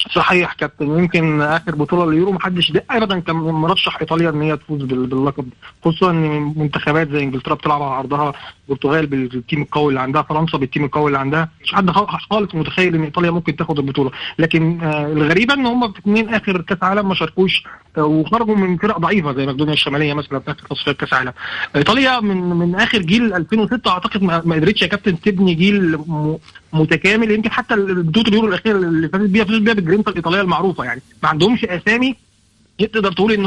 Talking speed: 185 wpm